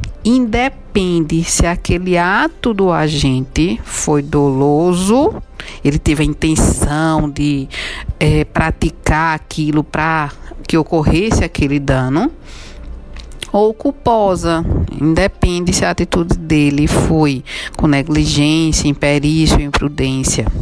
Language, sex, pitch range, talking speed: Portuguese, female, 145-180 Hz, 95 wpm